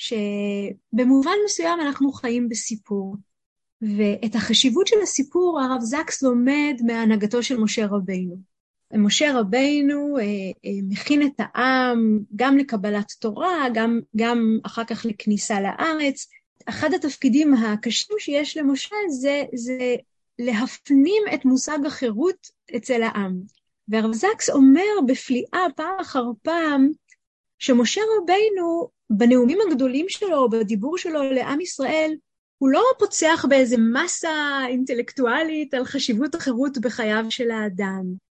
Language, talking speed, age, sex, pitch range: Hebrew, 110 wpm, 30-49, female, 230-290 Hz